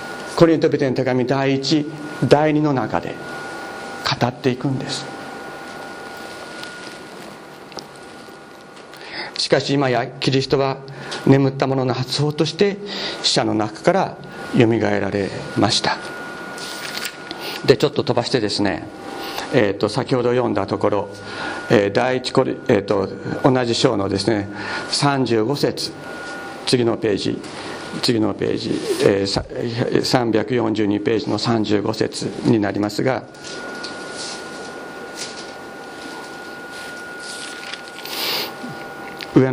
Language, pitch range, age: Japanese, 115-145 Hz, 50-69